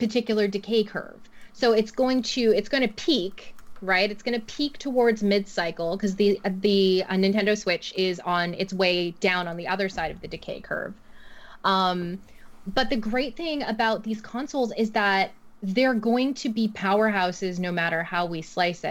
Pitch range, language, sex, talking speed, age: 185-225 Hz, English, female, 180 wpm, 20-39